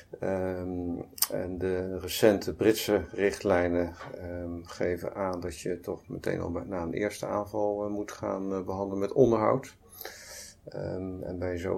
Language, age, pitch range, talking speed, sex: Dutch, 50-69, 90-105 Hz, 130 wpm, male